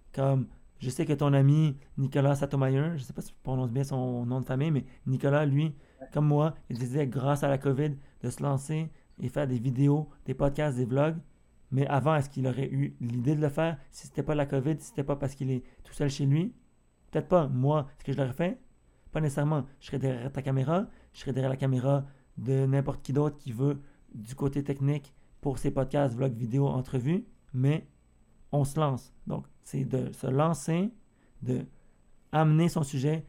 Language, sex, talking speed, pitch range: French, male, 205 wpm, 135-155 Hz